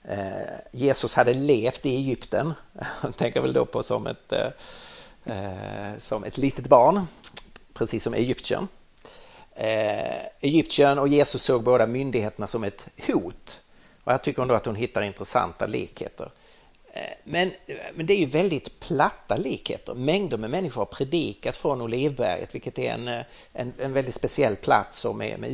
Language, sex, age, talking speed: Swedish, male, 50-69, 145 wpm